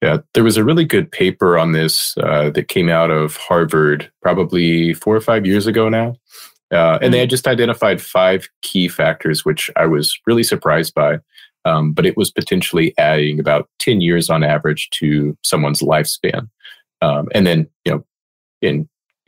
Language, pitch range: English, 75-85 Hz